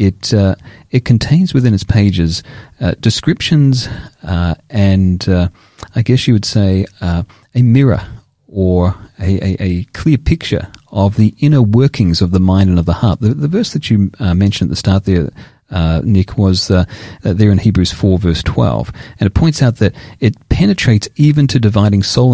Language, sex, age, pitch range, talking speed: English, male, 40-59, 95-120 Hz, 185 wpm